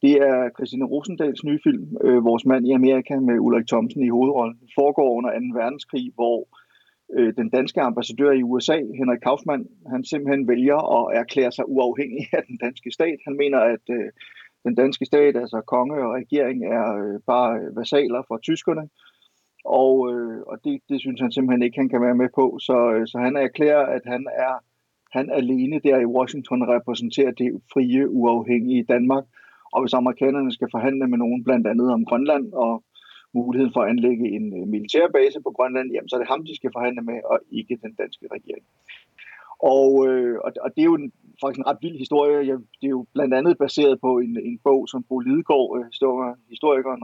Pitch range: 120-140 Hz